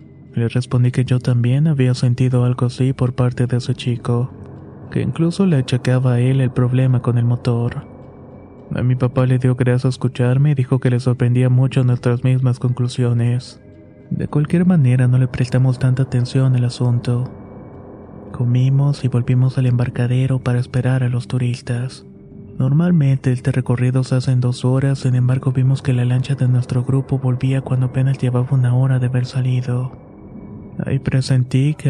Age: 20-39